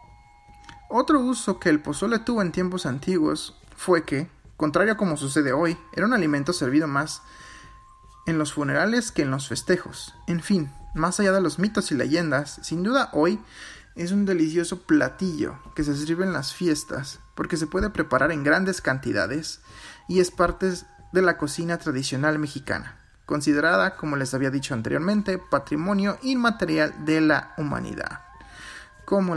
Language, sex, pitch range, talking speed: Spanish, male, 135-190 Hz, 155 wpm